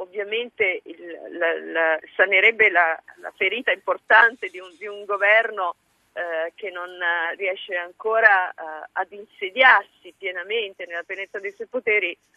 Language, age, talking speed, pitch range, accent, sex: Italian, 40-59, 135 wpm, 185-255 Hz, native, female